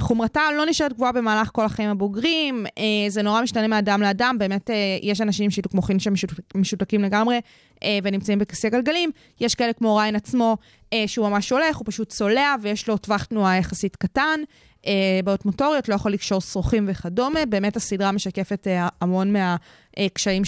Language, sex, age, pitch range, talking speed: Hebrew, female, 20-39, 190-235 Hz, 175 wpm